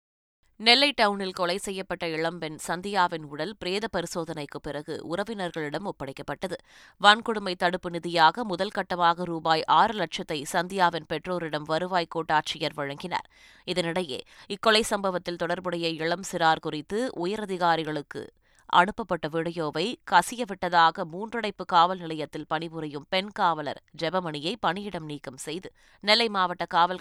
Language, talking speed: Tamil, 105 wpm